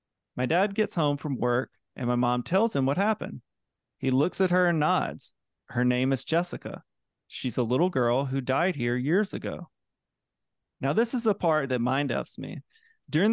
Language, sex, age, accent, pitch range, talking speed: English, male, 30-49, American, 125-170 Hz, 190 wpm